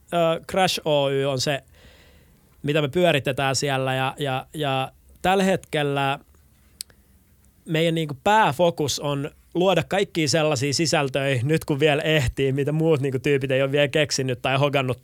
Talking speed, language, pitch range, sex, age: 140 wpm, Finnish, 130-150 Hz, male, 20-39